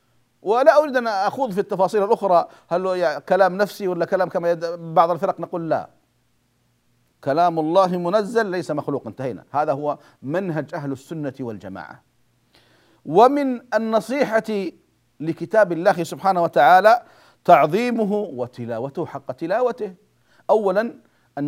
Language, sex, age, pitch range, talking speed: Arabic, male, 40-59, 160-215 Hz, 120 wpm